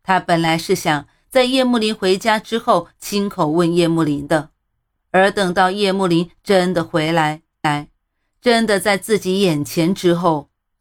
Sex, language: female, Chinese